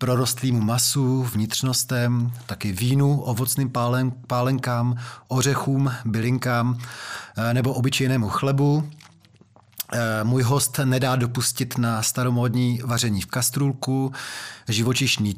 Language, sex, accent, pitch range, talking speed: Czech, male, native, 120-135 Hz, 85 wpm